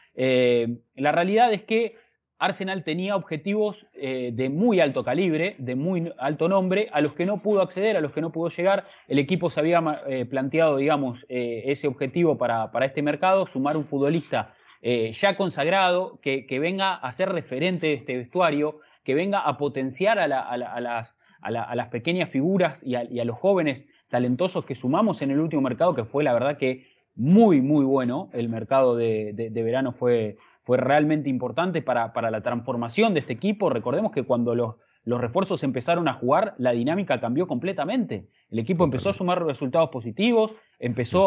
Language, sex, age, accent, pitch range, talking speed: English, male, 20-39, Argentinian, 125-175 Hz, 180 wpm